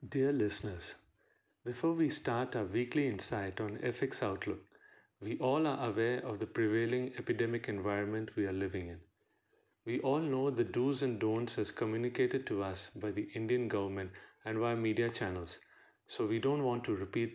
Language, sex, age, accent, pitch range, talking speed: English, male, 40-59, Indian, 105-130 Hz, 170 wpm